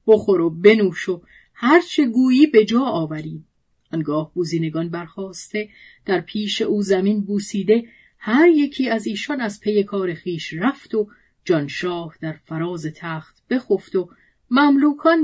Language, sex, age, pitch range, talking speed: Persian, female, 40-59, 175-235 Hz, 135 wpm